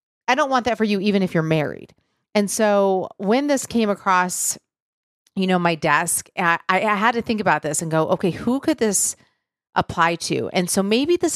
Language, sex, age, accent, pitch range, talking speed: English, female, 40-59, American, 170-230 Hz, 205 wpm